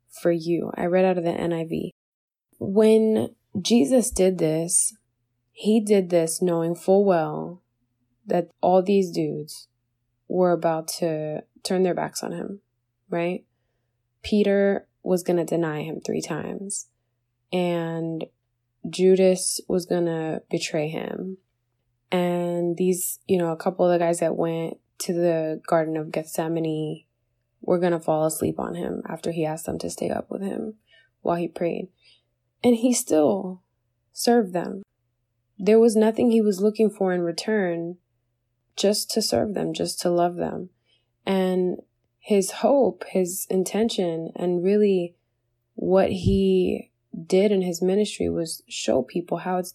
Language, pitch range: English, 150-195 Hz